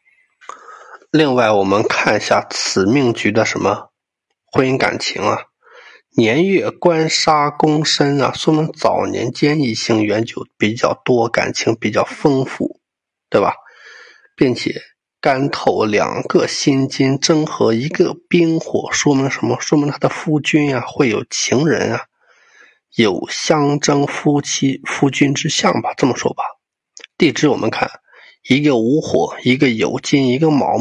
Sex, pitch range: male, 130-175 Hz